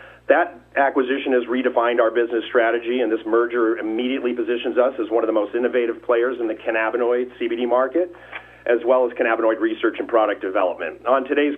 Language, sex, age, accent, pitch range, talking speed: English, male, 40-59, American, 120-145 Hz, 180 wpm